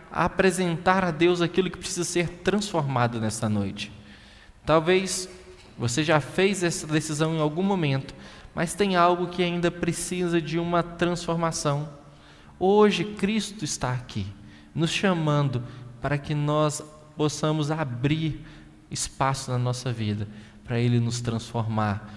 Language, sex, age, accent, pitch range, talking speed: Portuguese, male, 20-39, Brazilian, 115-165 Hz, 125 wpm